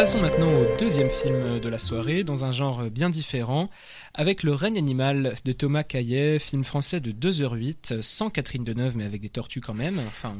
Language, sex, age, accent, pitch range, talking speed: French, male, 20-39, French, 125-160 Hz, 215 wpm